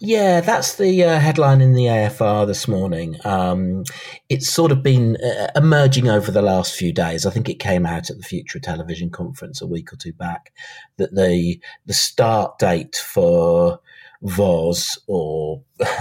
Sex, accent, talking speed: male, British, 170 wpm